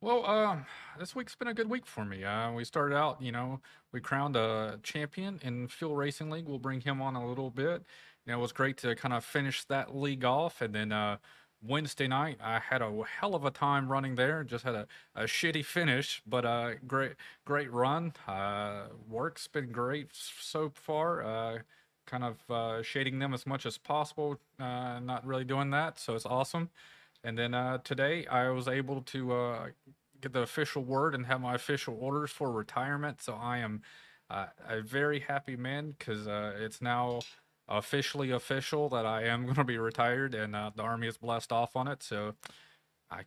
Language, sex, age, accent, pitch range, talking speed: English, male, 30-49, American, 115-145 Hz, 200 wpm